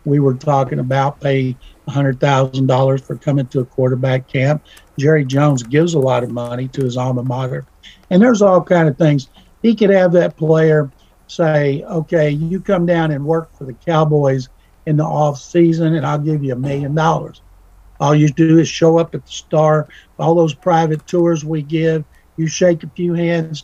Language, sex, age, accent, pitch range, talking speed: English, male, 60-79, American, 140-170 Hz, 190 wpm